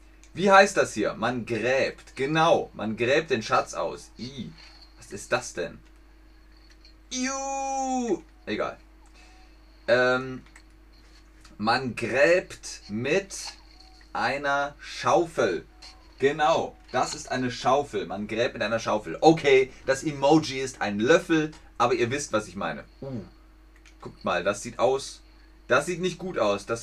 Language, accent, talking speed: German, German, 130 wpm